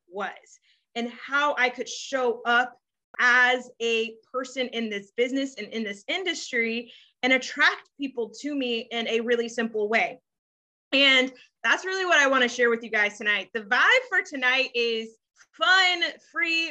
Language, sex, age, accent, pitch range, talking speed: English, female, 20-39, American, 235-290 Hz, 165 wpm